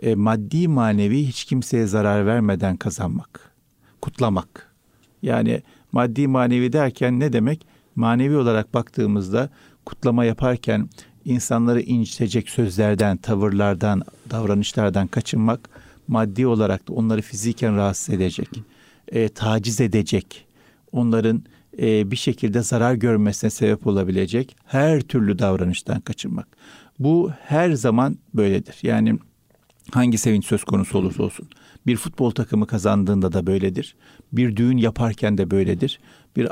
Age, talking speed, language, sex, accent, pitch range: 50-69, 110 wpm, Turkish, male, native, 105-125 Hz